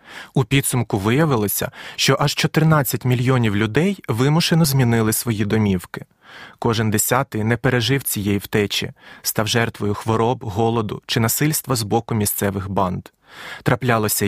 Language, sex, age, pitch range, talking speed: Ukrainian, male, 30-49, 110-150 Hz, 120 wpm